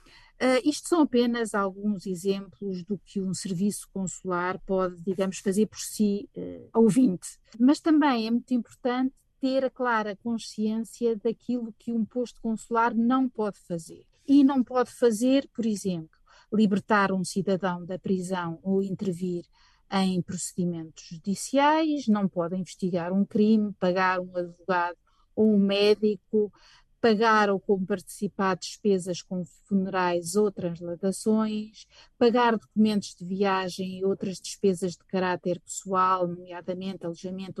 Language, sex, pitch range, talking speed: Portuguese, female, 185-220 Hz, 130 wpm